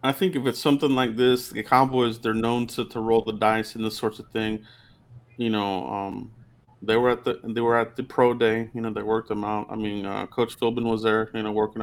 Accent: American